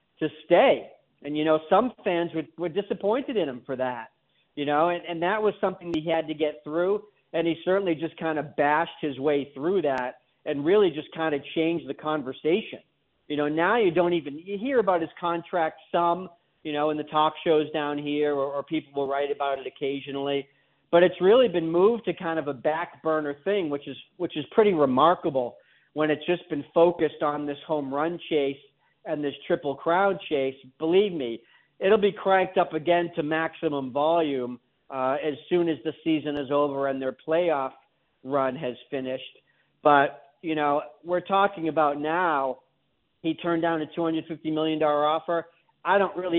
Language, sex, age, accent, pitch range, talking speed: English, male, 40-59, American, 140-170 Hz, 195 wpm